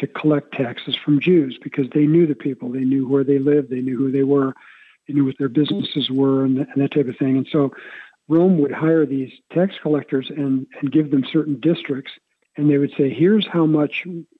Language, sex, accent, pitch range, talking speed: English, male, American, 140-160 Hz, 215 wpm